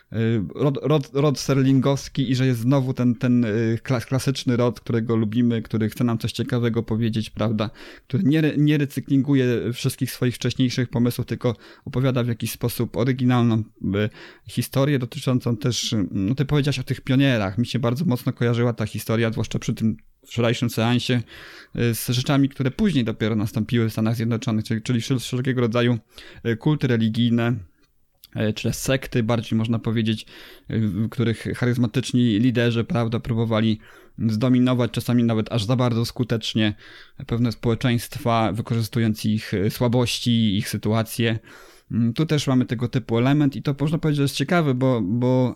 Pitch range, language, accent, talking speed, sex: 115-130 Hz, English, Polish, 150 wpm, male